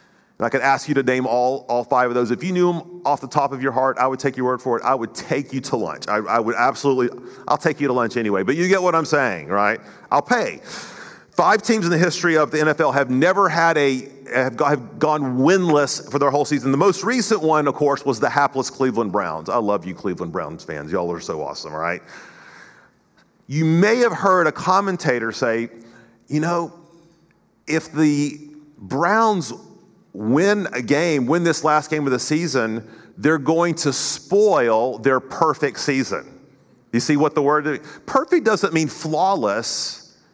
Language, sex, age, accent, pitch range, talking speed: English, male, 40-59, American, 130-165 Hz, 200 wpm